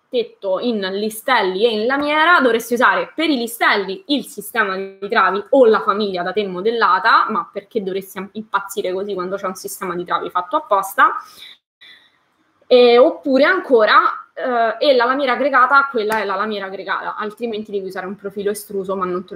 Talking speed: 175 wpm